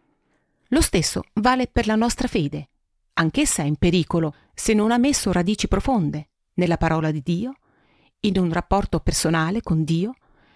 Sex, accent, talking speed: female, native, 155 wpm